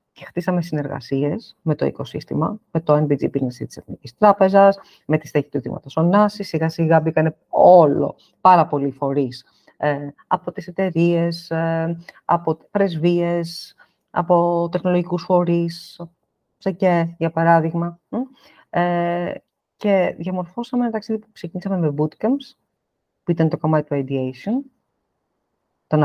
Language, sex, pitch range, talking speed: Greek, female, 155-200 Hz, 125 wpm